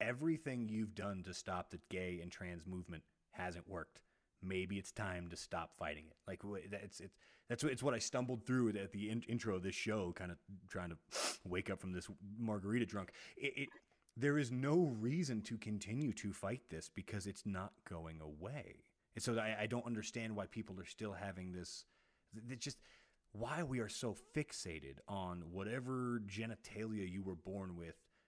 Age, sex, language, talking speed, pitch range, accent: 30-49, male, English, 185 wpm, 95-130 Hz, American